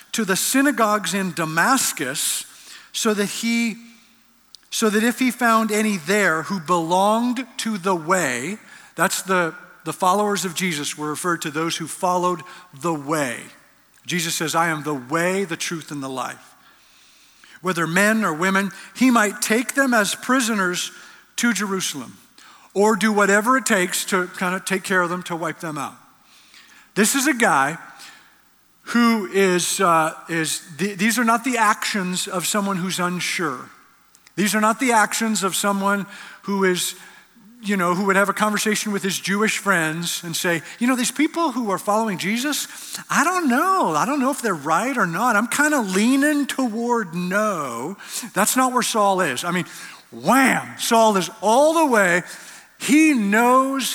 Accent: American